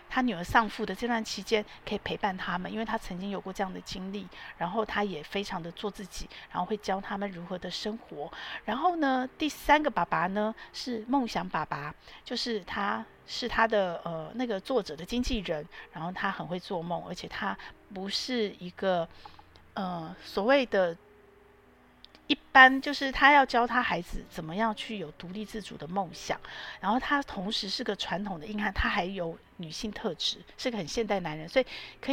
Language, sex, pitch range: Chinese, female, 180-235 Hz